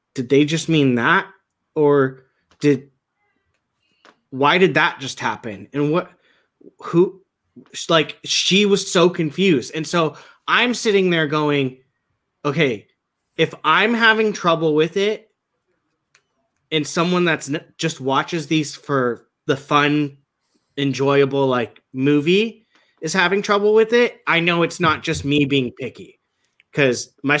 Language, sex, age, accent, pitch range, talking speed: English, male, 20-39, American, 135-175 Hz, 130 wpm